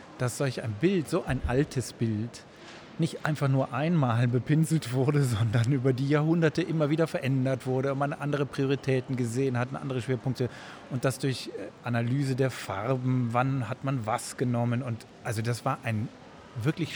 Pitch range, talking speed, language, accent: 125-150 Hz, 165 wpm, German, German